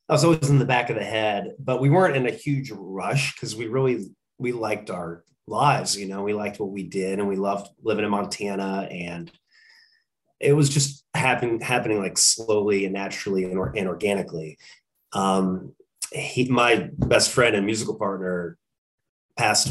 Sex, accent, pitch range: male, American, 95-120 Hz